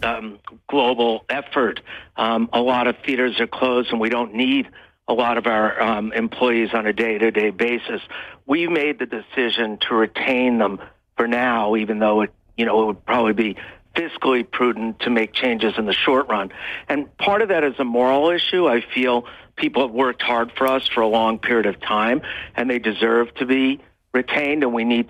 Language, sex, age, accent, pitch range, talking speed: English, male, 60-79, American, 110-130 Hz, 190 wpm